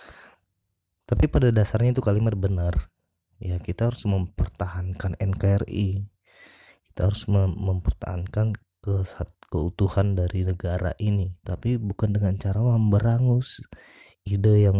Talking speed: 105 wpm